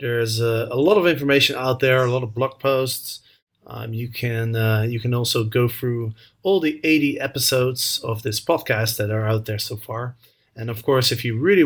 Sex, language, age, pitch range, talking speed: male, English, 30-49, 115-135 Hz, 205 wpm